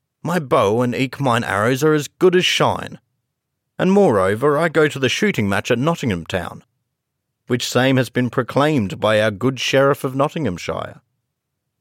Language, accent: English, Australian